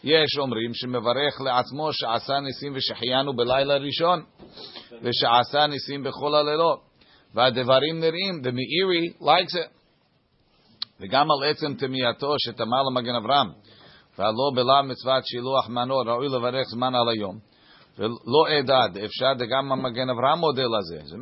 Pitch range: 120-140 Hz